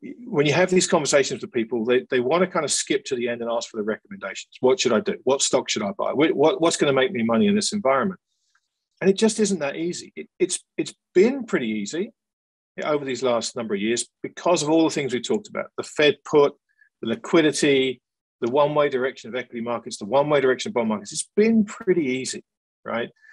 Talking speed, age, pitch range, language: 230 wpm, 50-69, 130-205 Hz, English